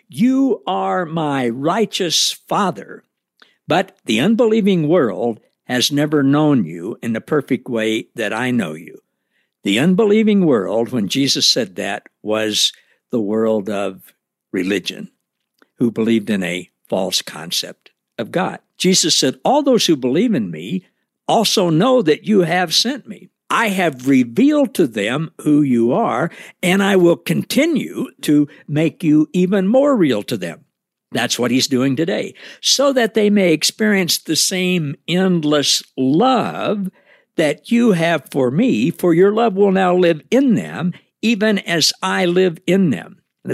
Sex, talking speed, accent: male, 150 wpm, American